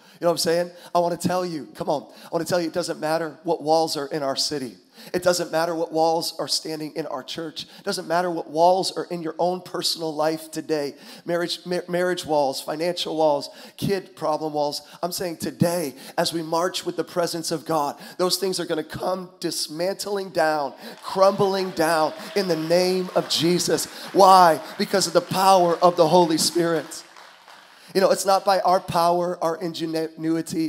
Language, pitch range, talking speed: English, 155-175 Hz, 195 wpm